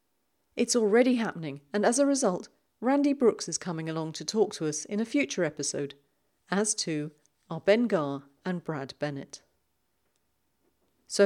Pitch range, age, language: 150-225 Hz, 40-59, English